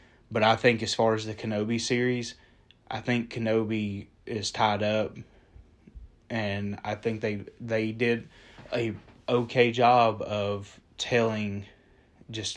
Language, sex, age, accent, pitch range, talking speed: English, male, 20-39, American, 100-115 Hz, 130 wpm